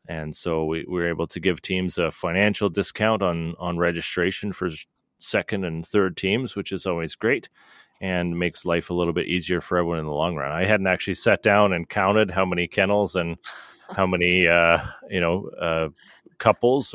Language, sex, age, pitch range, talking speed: English, male, 30-49, 85-100 Hz, 190 wpm